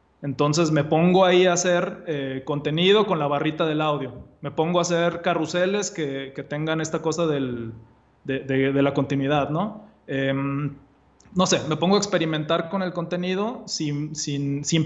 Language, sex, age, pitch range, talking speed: Spanish, male, 20-39, 145-180 Hz, 175 wpm